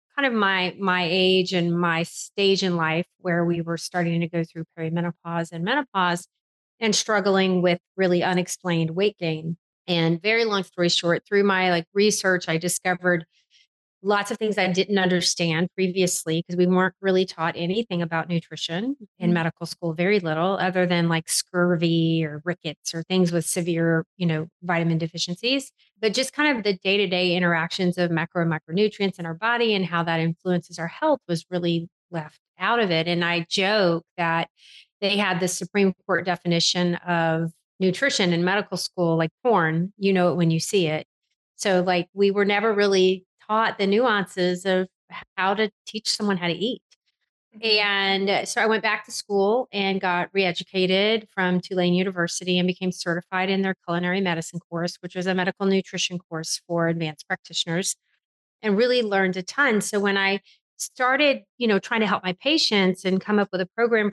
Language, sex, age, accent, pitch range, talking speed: English, female, 30-49, American, 170-200 Hz, 180 wpm